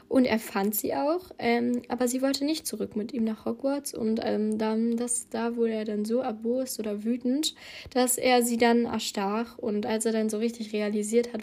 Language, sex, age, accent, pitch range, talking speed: German, female, 10-29, German, 210-240 Hz, 200 wpm